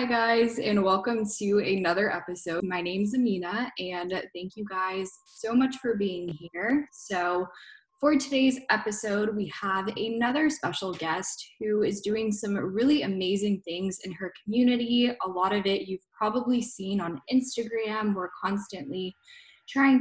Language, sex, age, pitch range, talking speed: English, female, 10-29, 185-240 Hz, 155 wpm